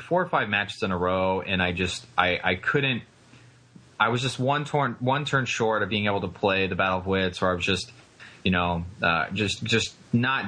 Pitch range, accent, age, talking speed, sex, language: 95-115 Hz, American, 20-39, 230 wpm, male, English